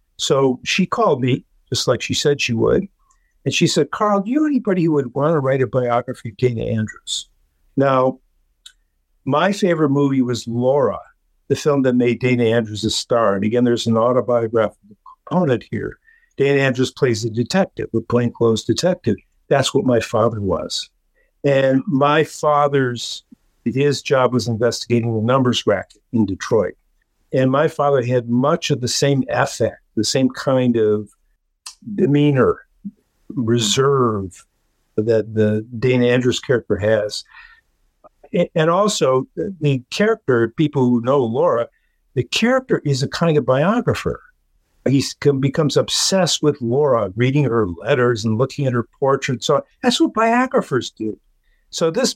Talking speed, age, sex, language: 150 wpm, 50-69, male, English